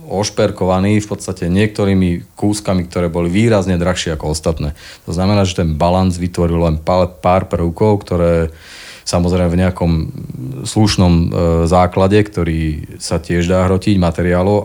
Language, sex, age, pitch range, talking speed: Slovak, male, 40-59, 85-100 Hz, 130 wpm